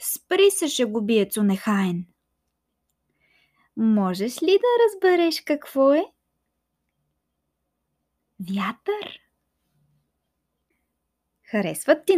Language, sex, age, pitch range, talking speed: Bulgarian, female, 20-39, 190-305 Hz, 65 wpm